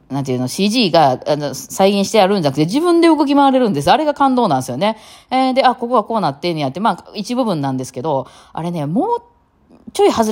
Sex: female